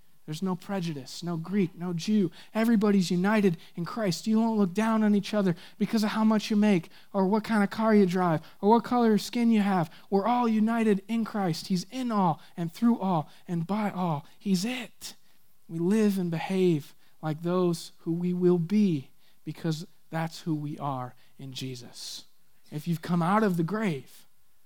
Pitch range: 165-205 Hz